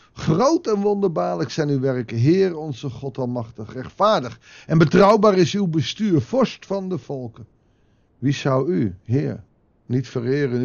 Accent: Dutch